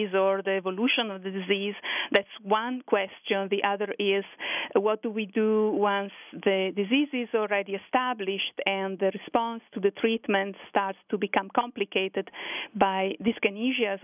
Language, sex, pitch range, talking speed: English, female, 195-230 Hz, 145 wpm